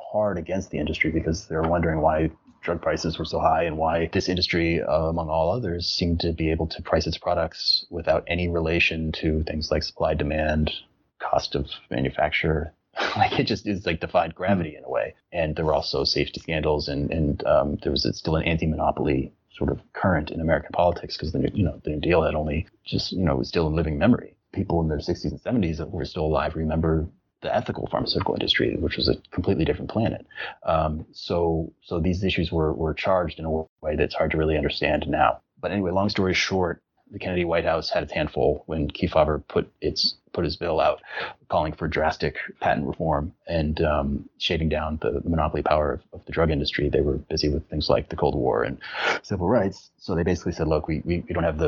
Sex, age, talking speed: male, 30-49, 215 wpm